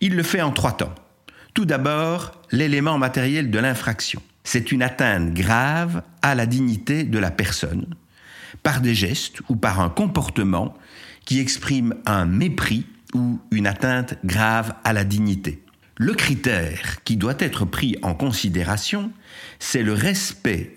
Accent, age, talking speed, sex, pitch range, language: French, 60-79, 145 wpm, male, 95-145 Hz, French